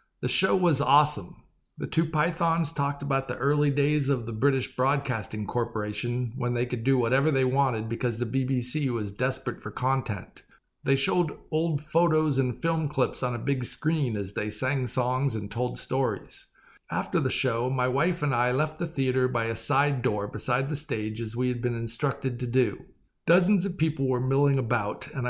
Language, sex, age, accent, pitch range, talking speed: English, male, 50-69, American, 125-150 Hz, 190 wpm